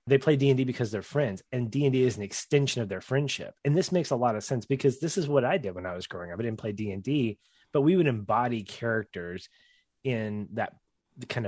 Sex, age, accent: male, 30-49, American